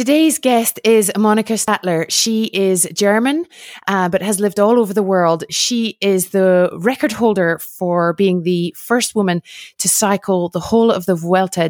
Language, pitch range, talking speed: English, 180-220 Hz, 170 wpm